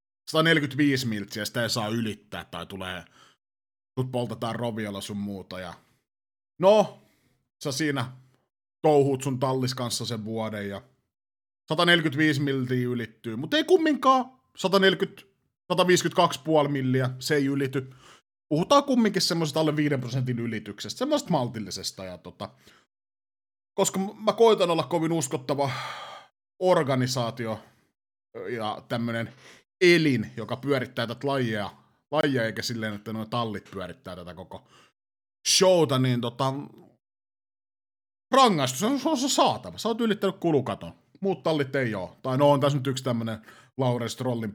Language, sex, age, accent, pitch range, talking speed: Finnish, male, 30-49, native, 110-175 Hz, 125 wpm